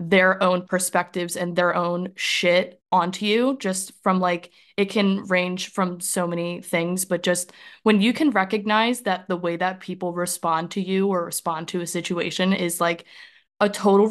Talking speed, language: 180 wpm, English